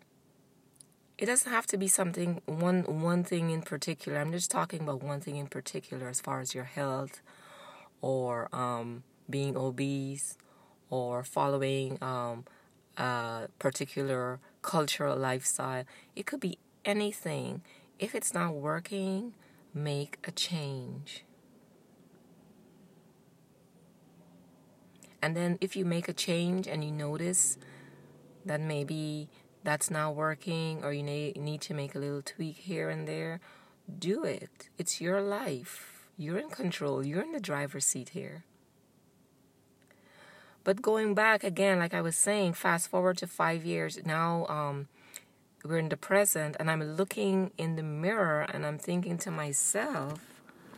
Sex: female